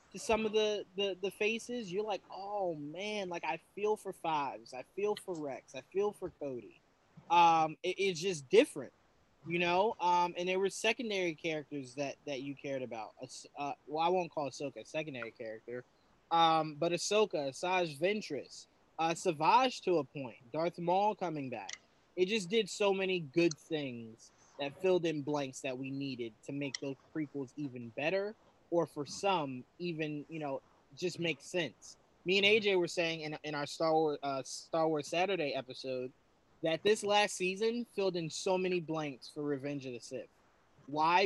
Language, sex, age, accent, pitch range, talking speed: English, male, 20-39, American, 140-185 Hz, 180 wpm